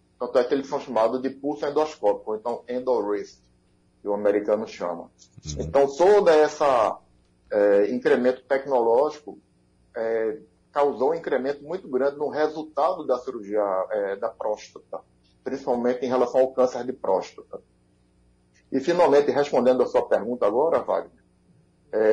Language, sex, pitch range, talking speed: Portuguese, male, 120-155 Hz, 140 wpm